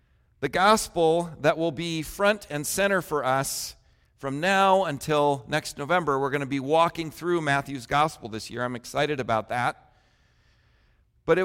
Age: 50-69